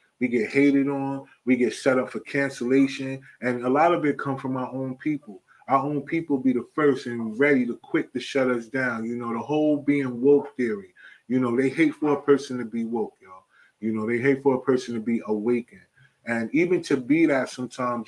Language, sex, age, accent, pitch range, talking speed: English, male, 20-39, American, 120-145 Hz, 225 wpm